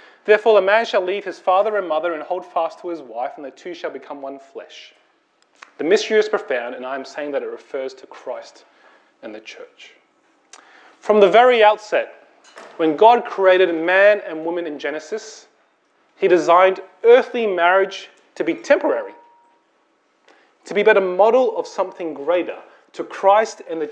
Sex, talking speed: male, 175 wpm